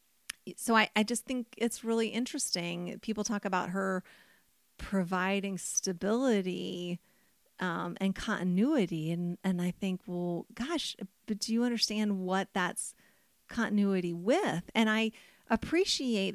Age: 40-59